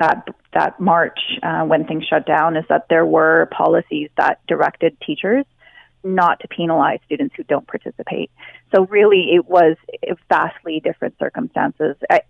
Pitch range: 165-220 Hz